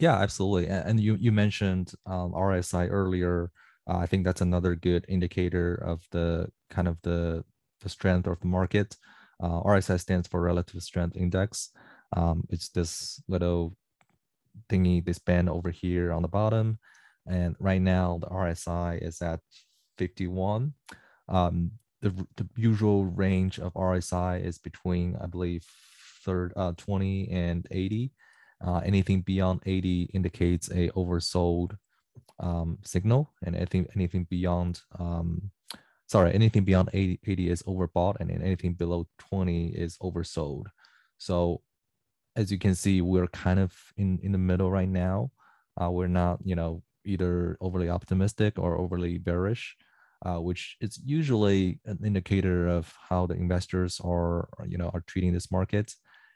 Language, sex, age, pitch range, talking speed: English, male, 20-39, 85-95 Hz, 150 wpm